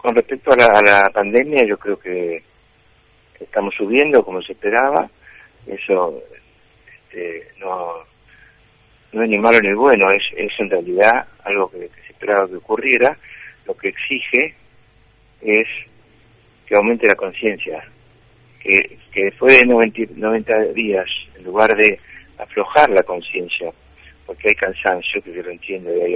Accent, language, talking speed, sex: Argentinian, Spanish, 150 wpm, male